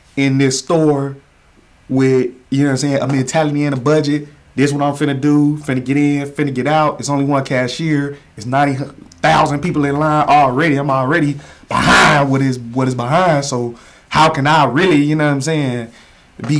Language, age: English, 30-49